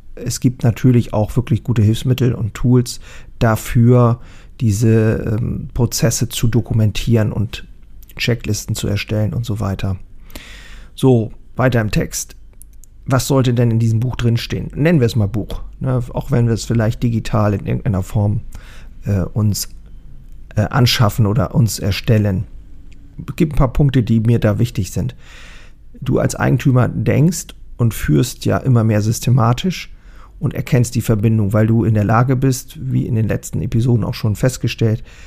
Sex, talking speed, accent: male, 155 wpm, German